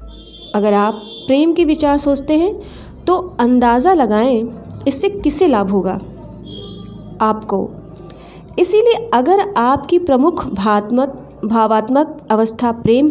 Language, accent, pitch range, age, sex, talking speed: Hindi, native, 220-305 Hz, 20-39, female, 105 wpm